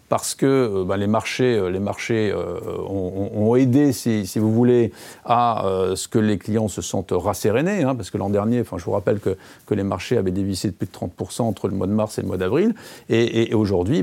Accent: French